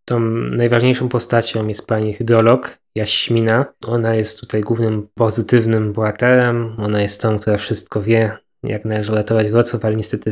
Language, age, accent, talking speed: Polish, 20-39, native, 145 wpm